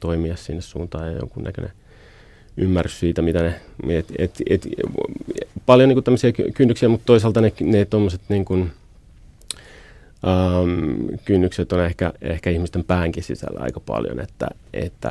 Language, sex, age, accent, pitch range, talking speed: Finnish, male, 30-49, native, 80-90 Hz, 130 wpm